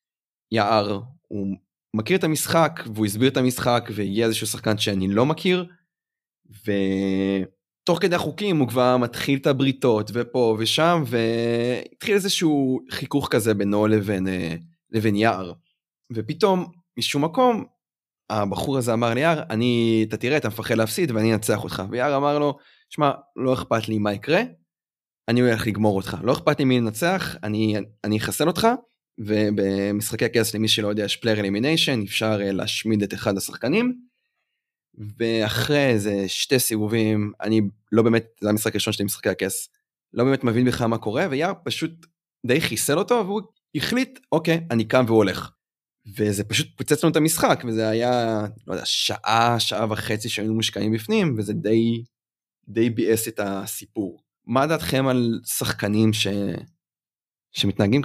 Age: 20-39